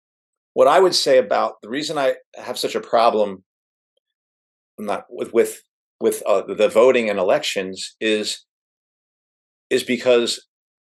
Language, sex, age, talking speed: English, male, 50-69, 140 wpm